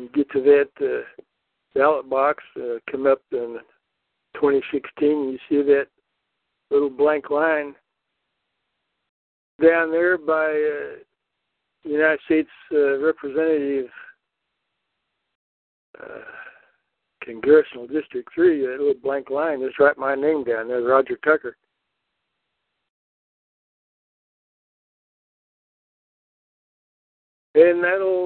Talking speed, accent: 100 wpm, American